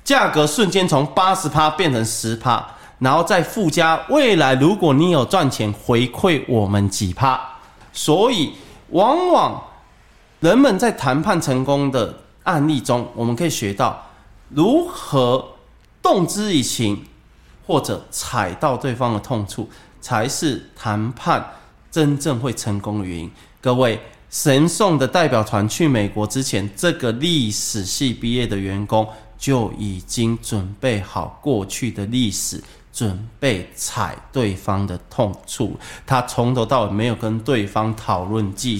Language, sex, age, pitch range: Chinese, male, 30-49, 105-135 Hz